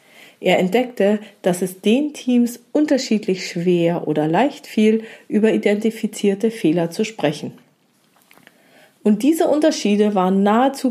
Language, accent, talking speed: German, German, 115 wpm